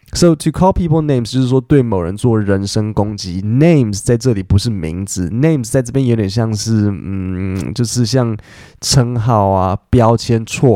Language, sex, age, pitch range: Chinese, male, 20-39, 105-145 Hz